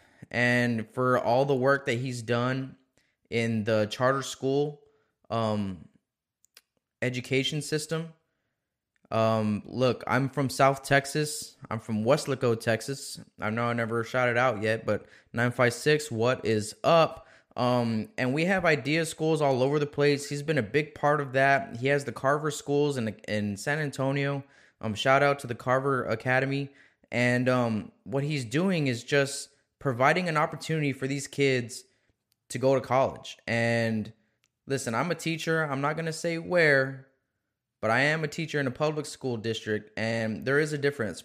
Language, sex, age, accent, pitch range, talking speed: English, male, 20-39, American, 115-145 Hz, 165 wpm